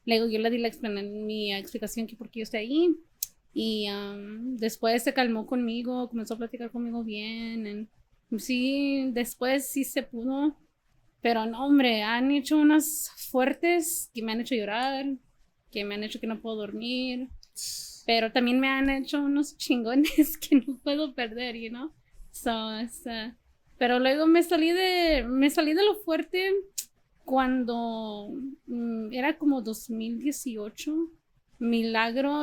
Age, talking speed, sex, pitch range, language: 20-39, 150 wpm, female, 225-275 Hz, Spanish